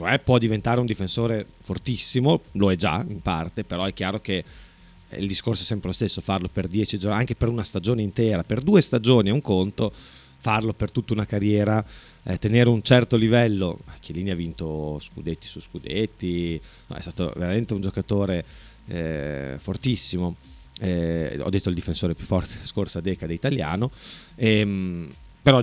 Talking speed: 170 wpm